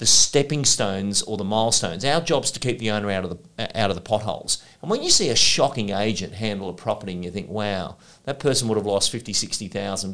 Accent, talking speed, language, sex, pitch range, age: Australian, 245 wpm, English, male, 100-130 Hz, 40-59